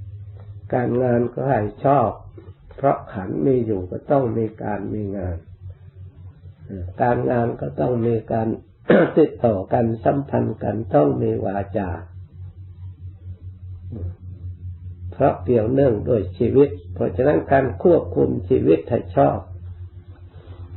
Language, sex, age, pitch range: Thai, male, 60-79, 90-120 Hz